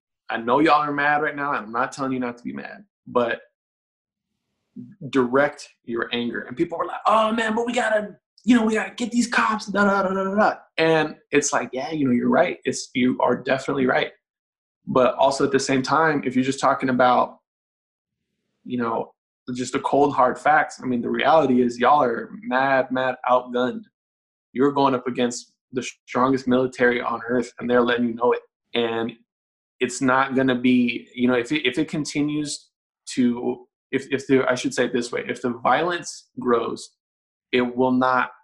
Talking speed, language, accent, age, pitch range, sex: 195 wpm, English, American, 20-39, 120-145 Hz, male